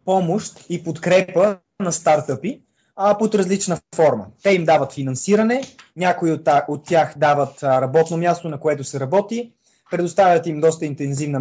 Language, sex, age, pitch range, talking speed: Bulgarian, male, 20-39, 140-180 Hz, 155 wpm